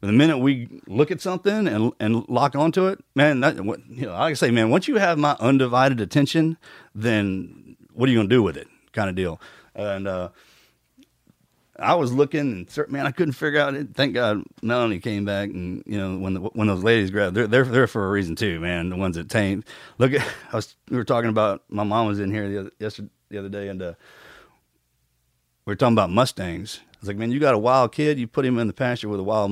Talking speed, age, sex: 240 wpm, 40-59, male